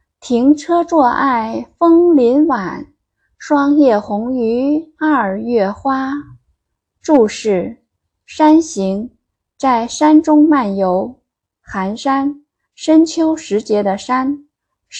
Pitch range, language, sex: 195-285 Hz, Chinese, female